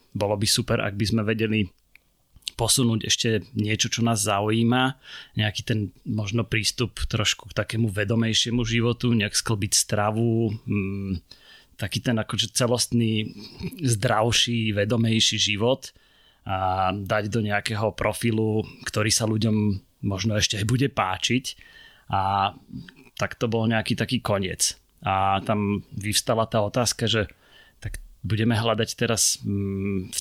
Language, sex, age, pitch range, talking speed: Slovak, male, 30-49, 100-115 Hz, 120 wpm